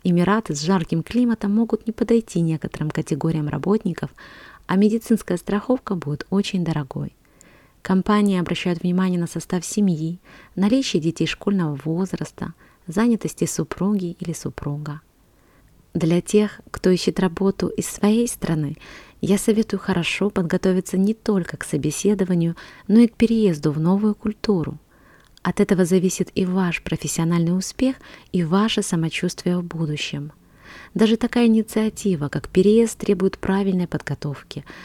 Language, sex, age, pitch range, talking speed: Russian, female, 20-39, 165-205 Hz, 125 wpm